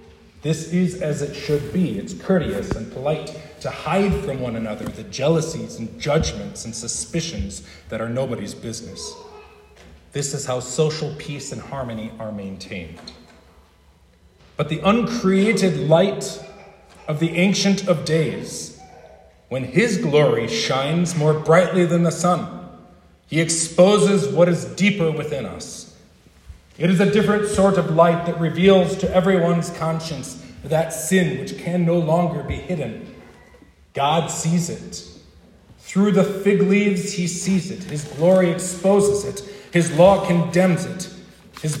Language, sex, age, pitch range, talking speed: English, male, 40-59, 125-185 Hz, 140 wpm